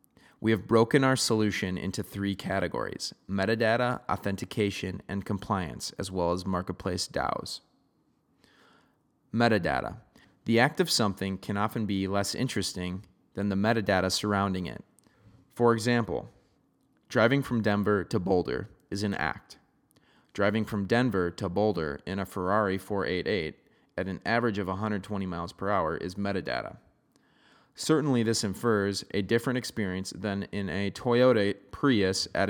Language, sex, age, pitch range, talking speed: English, male, 30-49, 95-115 Hz, 135 wpm